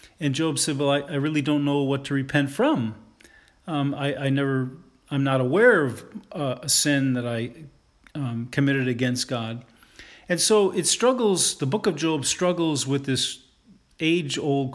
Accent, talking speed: American, 170 wpm